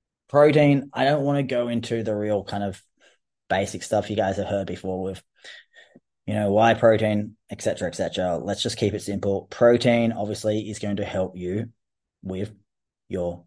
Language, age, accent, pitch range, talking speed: English, 20-39, Australian, 95-120 Hz, 185 wpm